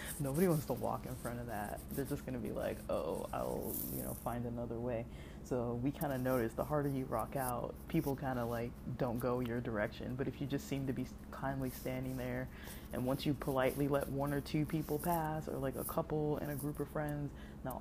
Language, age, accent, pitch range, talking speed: English, 20-39, American, 110-145 Hz, 235 wpm